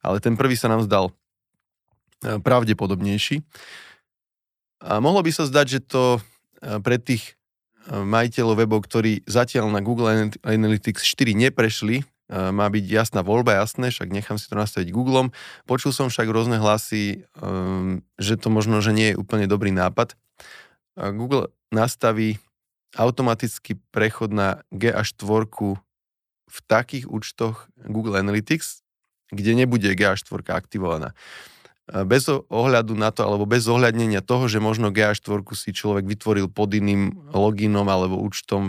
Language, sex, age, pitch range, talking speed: Slovak, male, 20-39, 100-120 Hz, 135 wpm